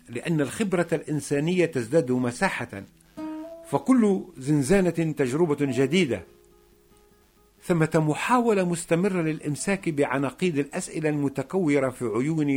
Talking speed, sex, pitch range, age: 85 wpm, male, 125-170 Hz, 50-69